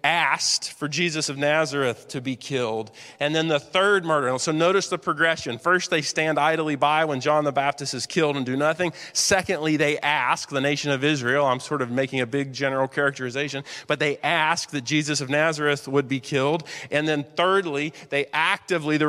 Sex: male